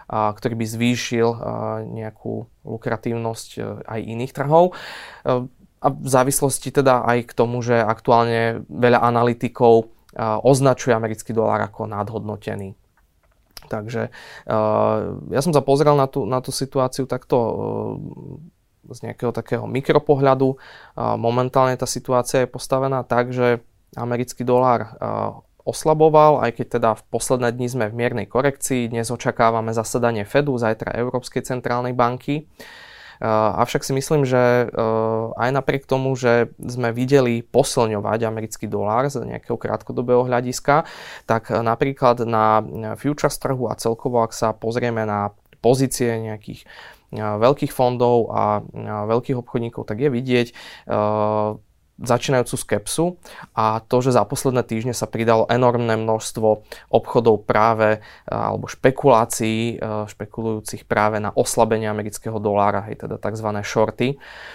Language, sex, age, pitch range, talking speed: Slovak, male, 20-39, 110-130 Hz, 130 wpm